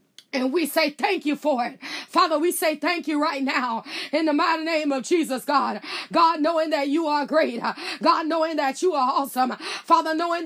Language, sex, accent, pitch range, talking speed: English, female, American, 310-360 Hz, 200 wpm